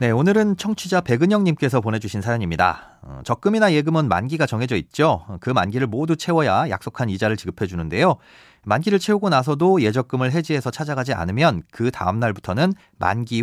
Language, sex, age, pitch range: Korean, male, 40-59, 105-165 Hz